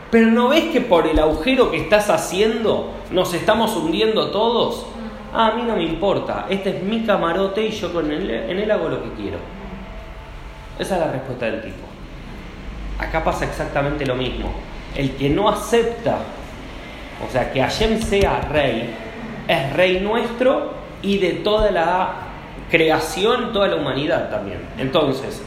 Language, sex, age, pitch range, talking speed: Spanish, male, 30-49, 150-210 Hz, 160 wpm